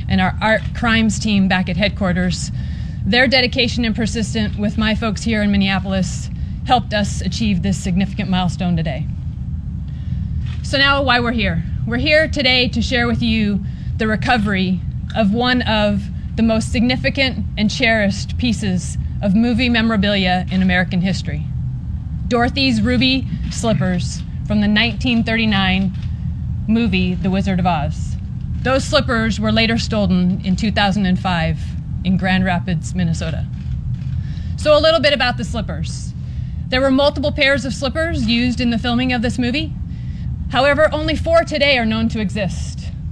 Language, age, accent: English, 30-49, American